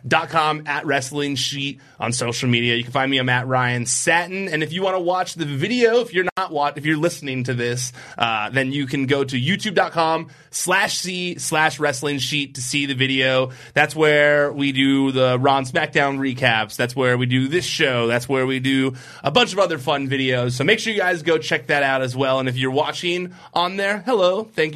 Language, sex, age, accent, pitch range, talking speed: English, male, 30-49, American, 130-160 Hz, 225 wpm